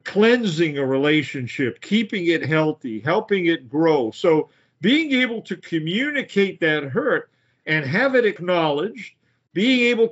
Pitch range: 140-200 Hz